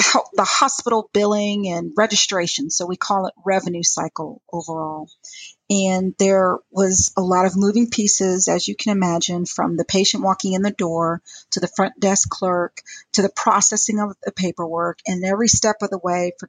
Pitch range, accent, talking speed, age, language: 180-210 Hz, American, 180 wpm, 40-59, English